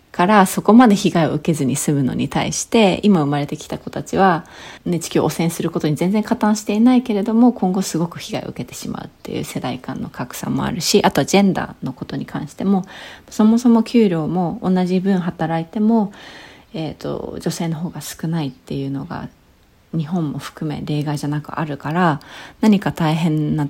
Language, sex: Japanese, female